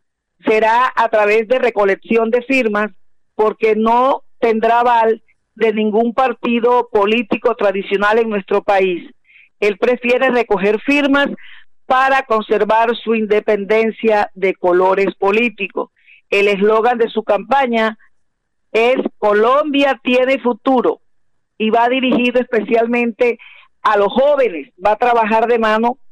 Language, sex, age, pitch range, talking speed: Spanish, female, 50-69, 210-245 Hz, 115 wpm